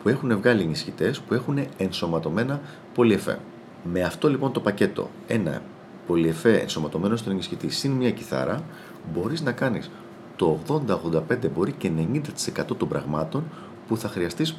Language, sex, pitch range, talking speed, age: Greek, male, 85-125 Hz, 140 wpm, 40-59